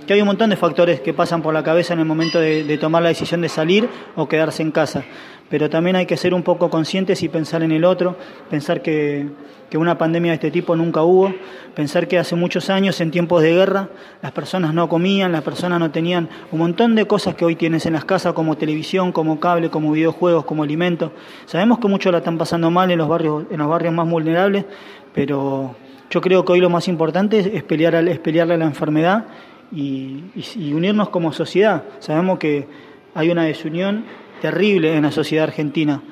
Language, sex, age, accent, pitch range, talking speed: Spanish, male, 20-39, Argentinian, 155-180 Hz, 210 wpm